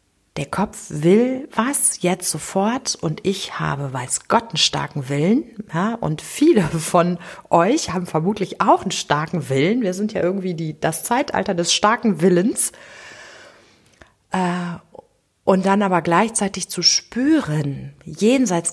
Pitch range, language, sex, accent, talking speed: 165-215 Hz, German, female, German, 140 wpm